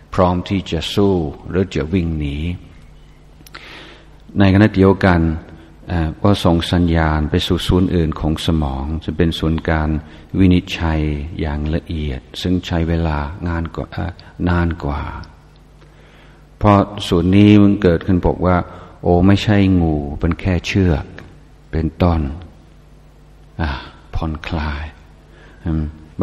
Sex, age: male, 60-79